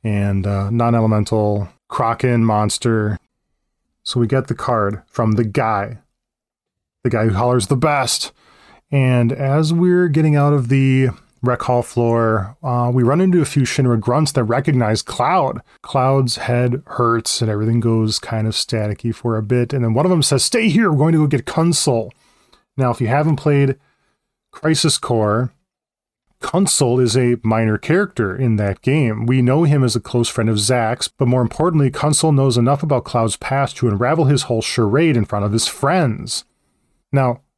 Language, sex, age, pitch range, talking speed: English, male, 20-39, 115-140 Hz, 175 wpm